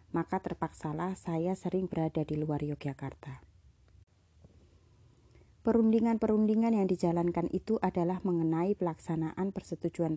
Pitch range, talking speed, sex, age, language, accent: 155-190 Hz, 95 wpm, female, 30-49, Indonesian, native